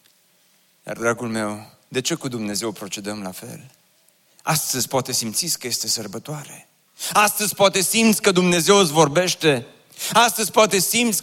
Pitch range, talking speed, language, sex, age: 155-205 Hz, 140 wpm, Romanian, male, 30-49